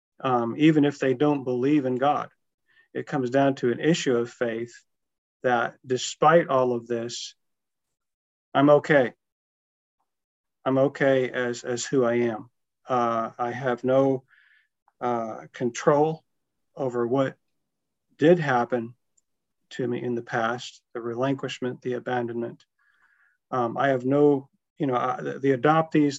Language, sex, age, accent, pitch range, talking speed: English, male, 40-59, American, 120-140 Hz, 135 wpm